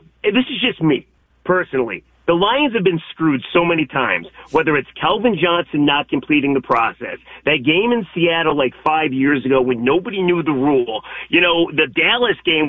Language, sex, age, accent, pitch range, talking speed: English, male, 40-59, American, 150-200 Hz, 185 wpm